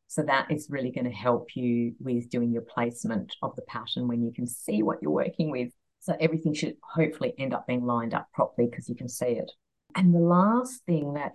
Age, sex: 40-59, female